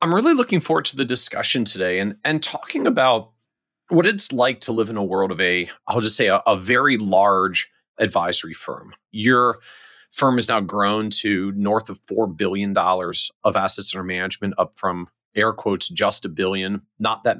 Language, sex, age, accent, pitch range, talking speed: English, male, 40-59, American, 95-120 Hz, 190 wpm